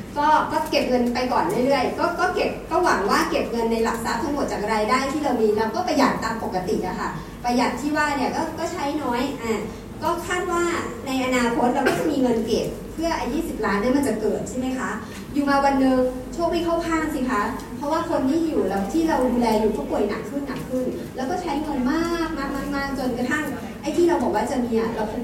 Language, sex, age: Thai, male, 30-49